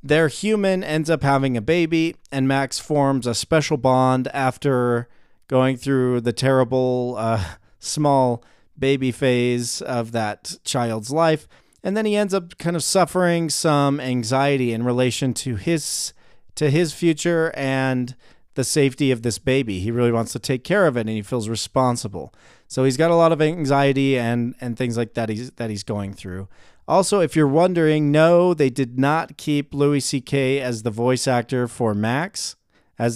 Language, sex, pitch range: English, male, 120-155 Hz